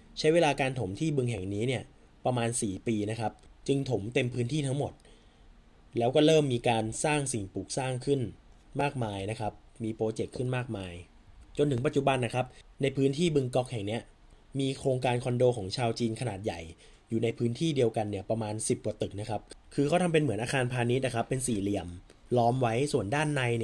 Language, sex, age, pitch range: Thai, male, 20-39, 110-140 Hz